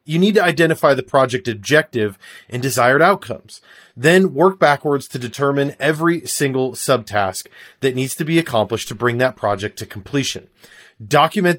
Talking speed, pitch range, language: 155 wpm, 120-165 Hz, English